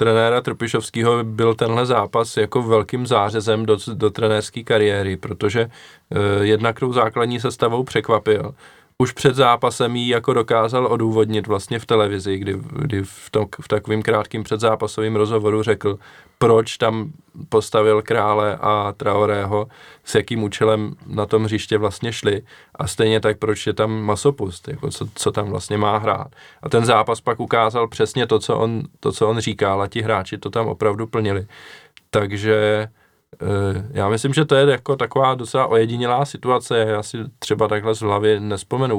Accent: native